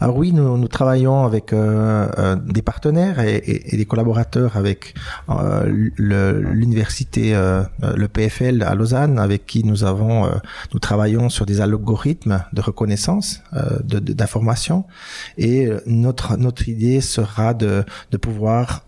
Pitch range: 105-125 Hz